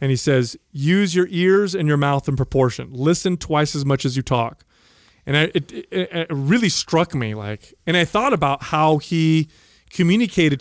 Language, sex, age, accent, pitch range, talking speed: English, male, 30-49, American, 135-175 Hz, 190 wpm